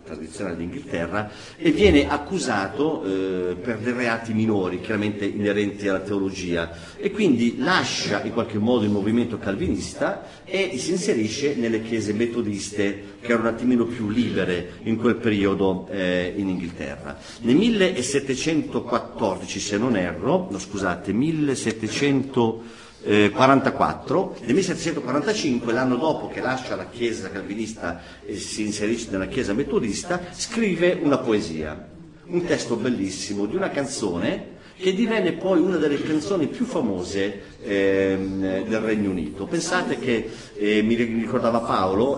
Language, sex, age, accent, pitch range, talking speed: Italian, male, 50-69, native, 100-130 Hz, 130 wpm